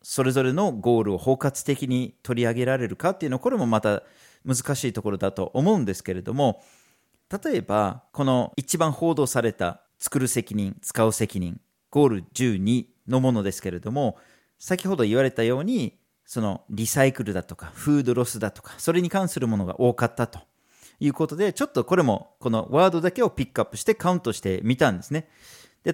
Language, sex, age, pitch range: Japanese, male, 40-59, 105-160 Hz